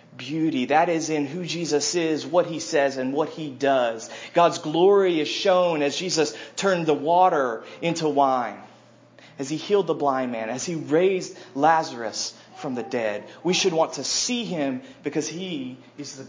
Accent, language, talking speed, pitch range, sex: American, English, 175 wpm, 155-255 Hz, male